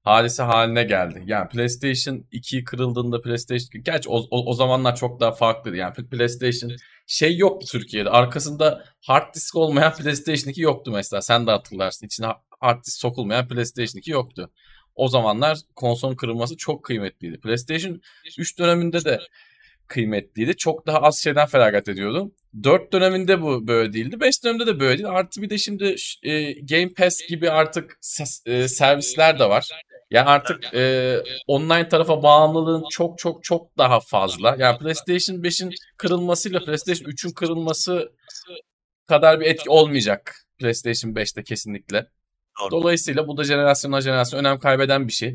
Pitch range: 120-170 Hz